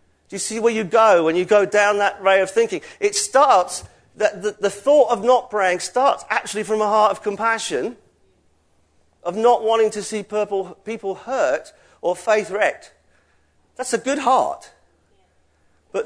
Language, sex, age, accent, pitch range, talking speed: English, male, 40-59, British, 205-260 Hz, 160 wpm